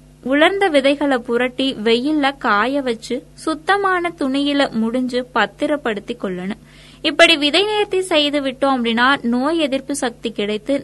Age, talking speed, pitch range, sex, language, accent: 20-39, 115 wpm, 235-295 Hz, female, Tamil, native